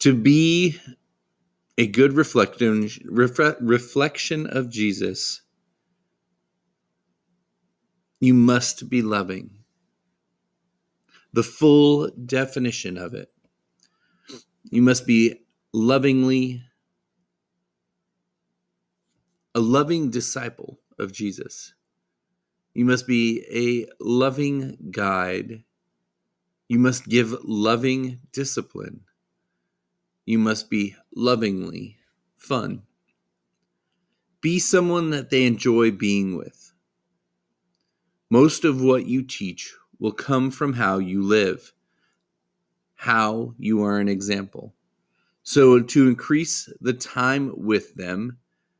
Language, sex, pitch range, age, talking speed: English, male, 105-130 Hz, 40-59, 90 wpm